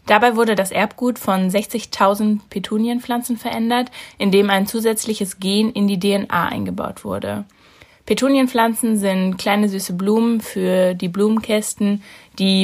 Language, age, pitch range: German, 20-39, 190-225 Hz